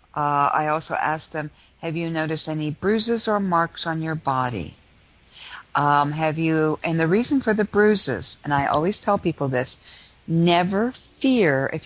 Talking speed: 165 wpm